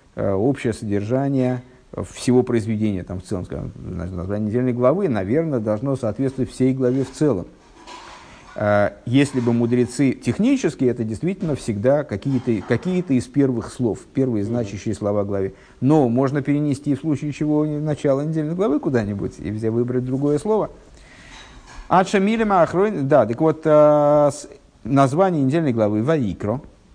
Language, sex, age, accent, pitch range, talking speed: Russian, male, 50-69, native, 115-150 Hz, 130 wpm